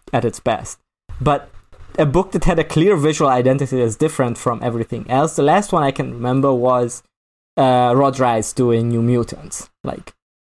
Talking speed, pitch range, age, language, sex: 175 wpm, 115-145 Hz, 20-39, English, male